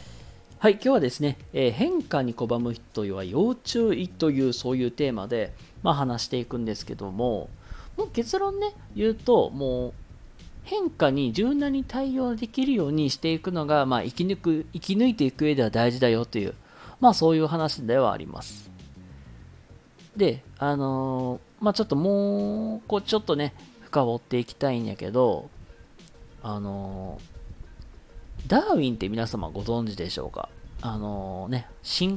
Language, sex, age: Japanese, male, 40-59